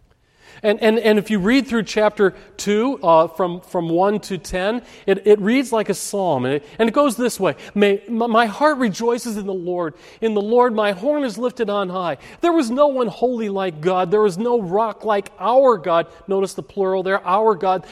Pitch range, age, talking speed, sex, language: 180-225 Hz, 40-59, 215 wpm, male, English